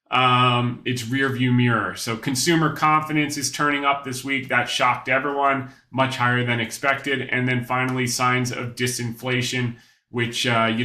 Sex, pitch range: male, 115-140 Hz